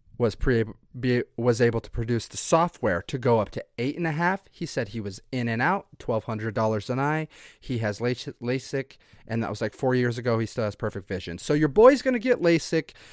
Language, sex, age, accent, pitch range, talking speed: English, male, 30-49, American, 110-145 Hz, 235 wpm